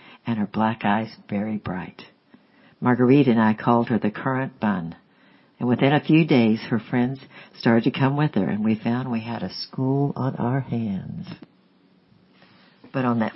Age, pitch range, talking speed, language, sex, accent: 60-79, 110-125 Hz, 175 wpm, English, female, American